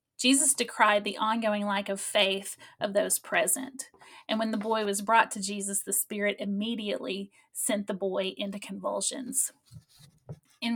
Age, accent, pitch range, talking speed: 30-49, American, 200-230 Hz, 150 wpm